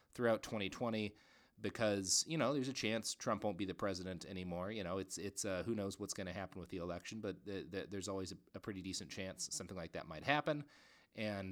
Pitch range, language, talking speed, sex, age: 95-120 Hz, English, 220 wpm, male, 30-49